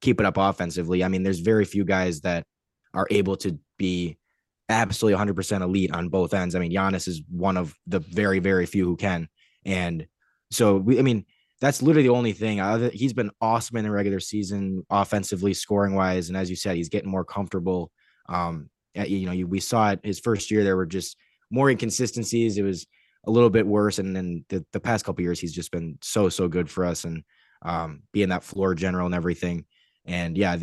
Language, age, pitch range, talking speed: English, 10-29, 90-105 Hz, 210 wpm